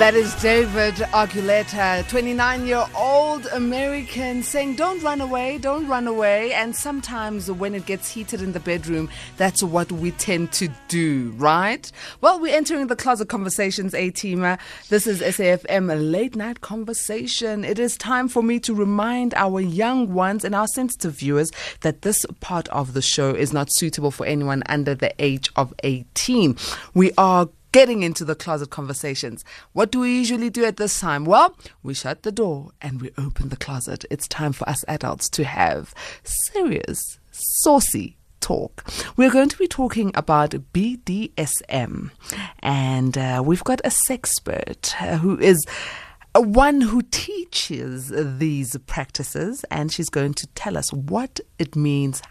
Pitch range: 150-245 Hz